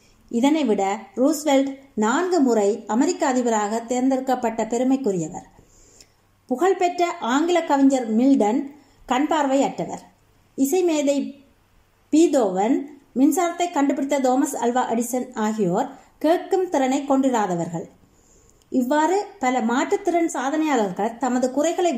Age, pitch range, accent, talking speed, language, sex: 30-49, 230-300 Hz, native, 85 wpm, Tamil, female